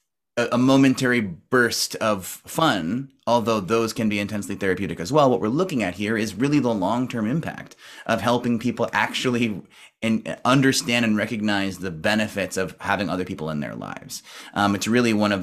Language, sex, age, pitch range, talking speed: English, male, 30-49, 105-130 Hz, 170 wpm